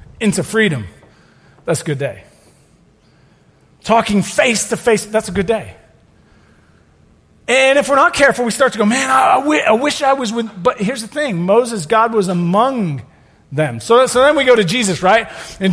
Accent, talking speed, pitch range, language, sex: American, 185 wpm, 170-280 Hz, English, male